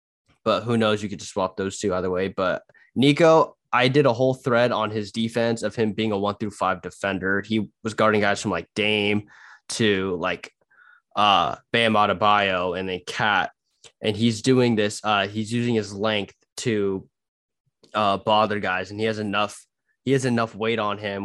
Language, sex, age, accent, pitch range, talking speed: English, male, 20-39, American, 100-115 Hz, 190 wpm